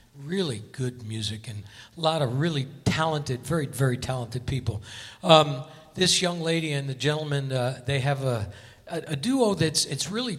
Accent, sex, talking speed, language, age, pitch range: American, male, 175 wpm, English, 60-79, 135-170 Hz